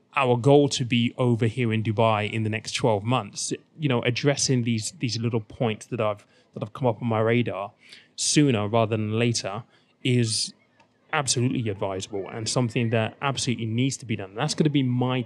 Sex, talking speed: male, 195 wpm